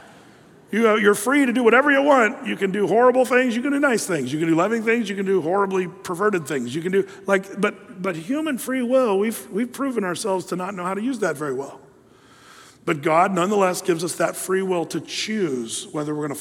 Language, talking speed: English, 240 wpm